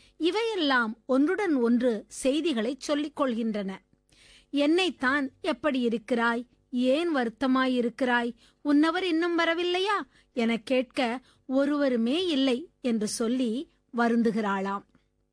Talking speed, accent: 80 wpm, native